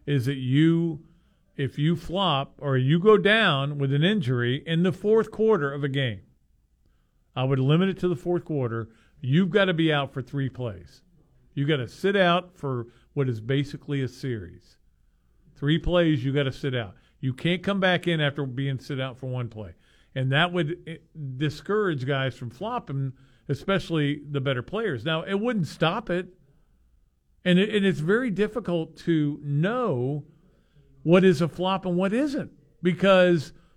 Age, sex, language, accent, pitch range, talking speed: 50-69, male, English, American, 140-205 Hz, 170 wpm